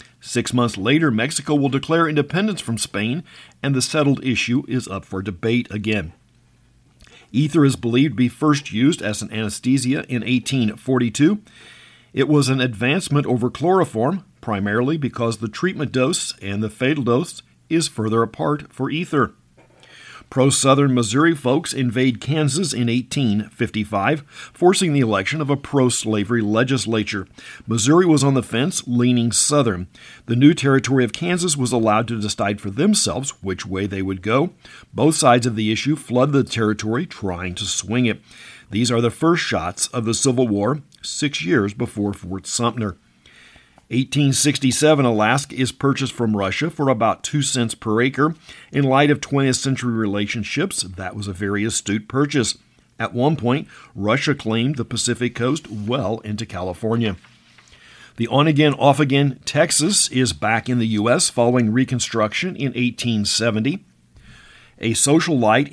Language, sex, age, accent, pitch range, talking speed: English, male, 50-69, American, 110-140 Hz, 150 wpm